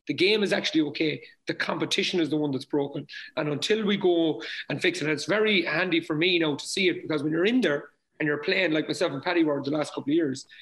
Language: English